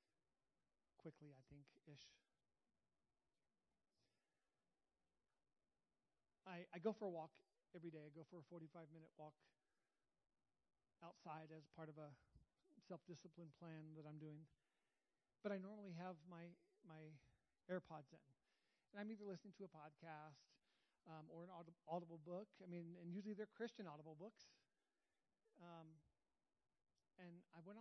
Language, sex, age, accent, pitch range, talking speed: English, male, 40-59, American, 160-190 Hz, 130 wpm